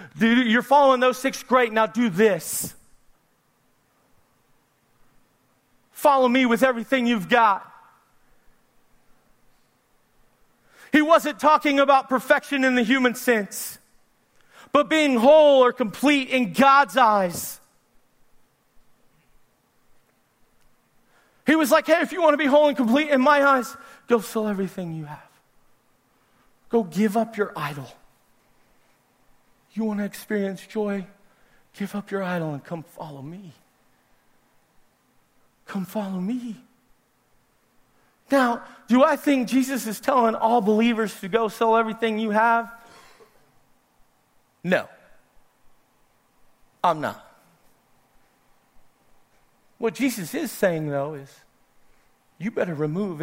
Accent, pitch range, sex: American, 180-265 Hz, male